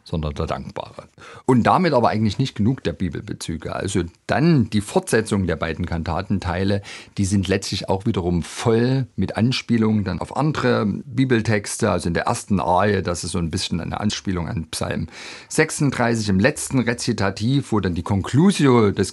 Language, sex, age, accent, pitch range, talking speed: German, male, 50-69, German, 90-115 Hz, 165 wpm